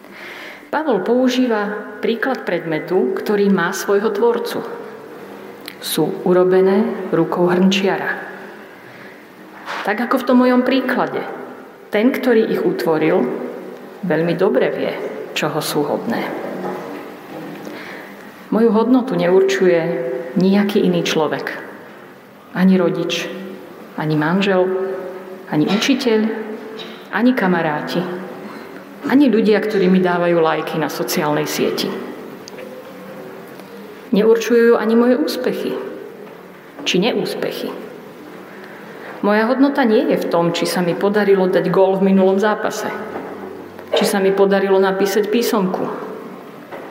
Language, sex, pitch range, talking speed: Slovak, female, 175-220 Hz, 100 wpm